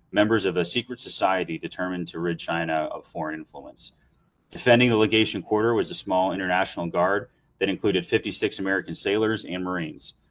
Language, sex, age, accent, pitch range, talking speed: English, male, 30-49, American, 90-110 Hz, 165 wpm